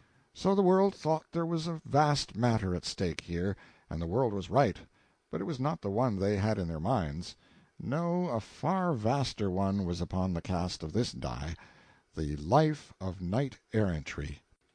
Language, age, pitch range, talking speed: English, 60-79, 95-145 Hz, 175 wpm